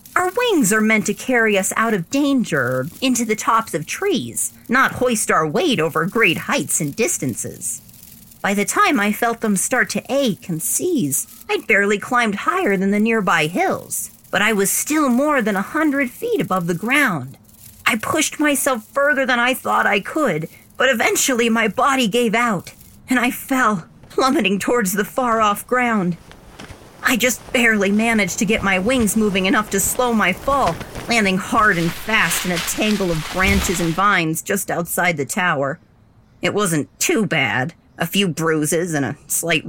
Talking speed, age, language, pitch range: 180 wpm, 40-59, English, 170-245 Hz